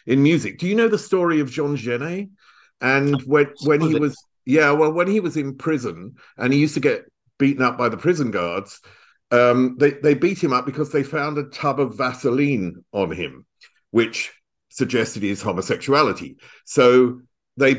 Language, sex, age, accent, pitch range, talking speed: English, male, 50-69, British, 125-155 Hz, 180 wpm